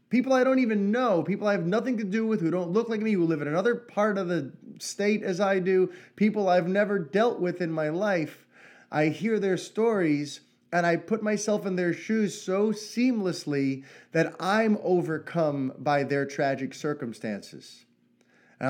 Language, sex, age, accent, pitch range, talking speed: English, male, 30-49, American, 140-200 Hz, 185 wpm